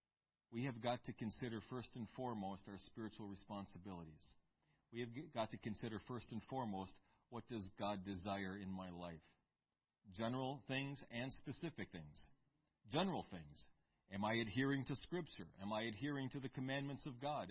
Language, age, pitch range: English, 40-59, 105-145 Hz